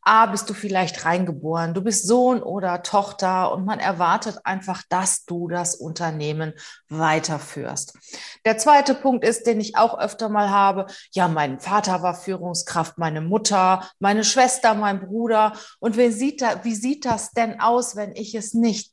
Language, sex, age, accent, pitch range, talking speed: German, female, 30-49, German, 180-220 Hz, 170 wpm